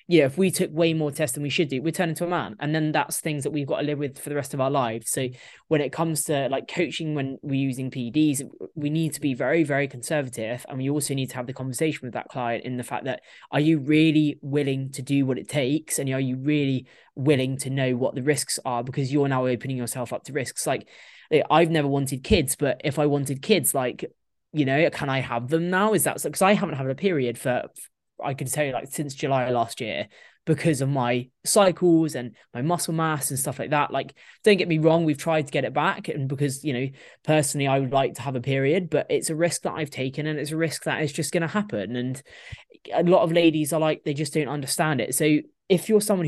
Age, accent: 20-39, British